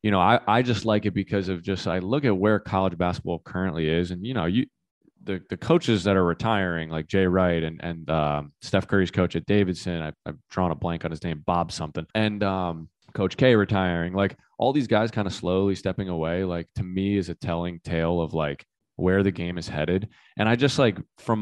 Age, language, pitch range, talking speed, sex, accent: 20-39, English, 85-105 Hz, 230 wpm, male, American